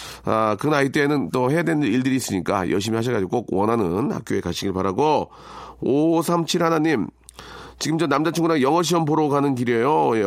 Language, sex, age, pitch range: Korean, male, 40-59, 115-170 Hz